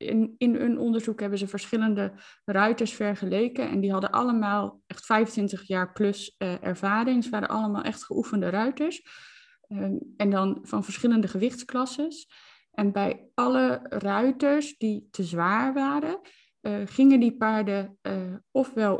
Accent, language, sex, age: Dutch, Dutch, female, 20-39